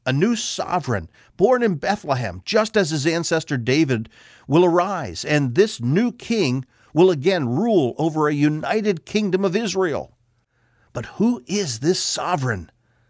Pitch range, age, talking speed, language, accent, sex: 120-165 Hz, 50-69, 140 wpm, English, American, male